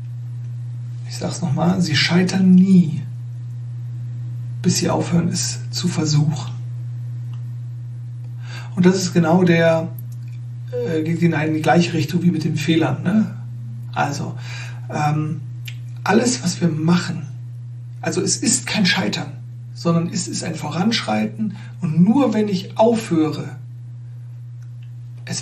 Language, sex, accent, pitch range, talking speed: German, male, German, 120-180 Hz, 120 wpm